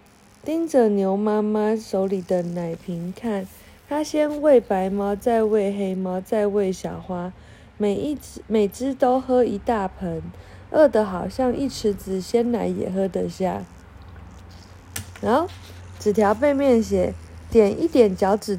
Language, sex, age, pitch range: Chinese, female, 20-39, 180-250 Hz